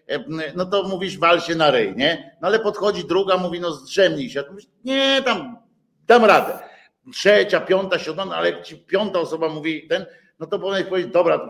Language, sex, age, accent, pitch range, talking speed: Polish, male, 50-69, native, 160-210 Hz, 185 wpm